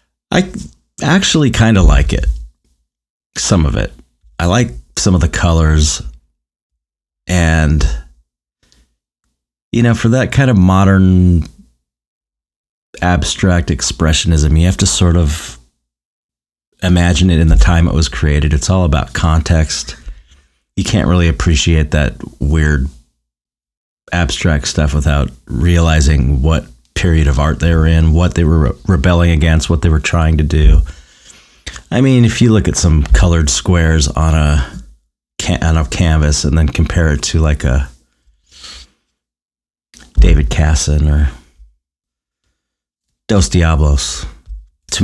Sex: male